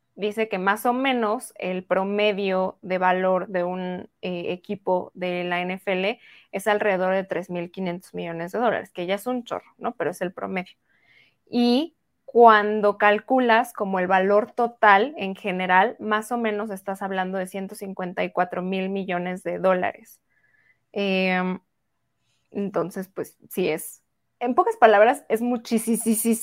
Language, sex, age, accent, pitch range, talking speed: Spanish, female, 20-39, Mexican, 185-220 Hz, 145 wpm